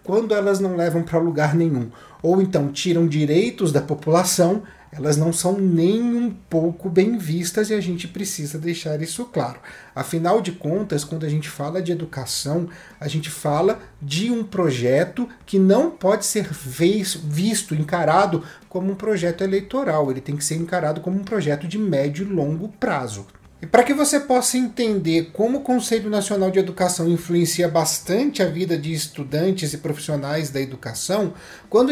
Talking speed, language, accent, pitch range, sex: 165 wpm, Portuguese, Brazilian, 155-205 Hz, male